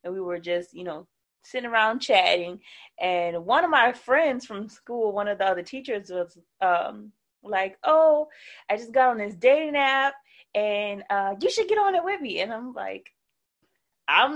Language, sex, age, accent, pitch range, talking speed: English, female, 20-39, American, 195-270 Hz, 190 wpm